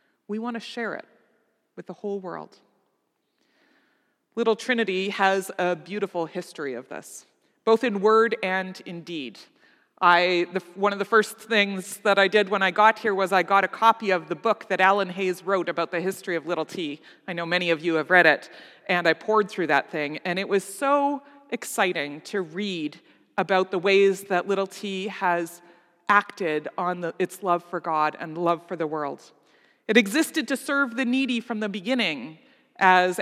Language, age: English, 30-49